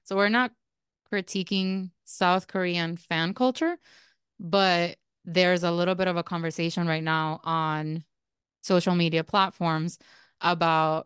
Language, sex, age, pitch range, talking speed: English, female, 20-39, 165-200 Hz, 125 wpm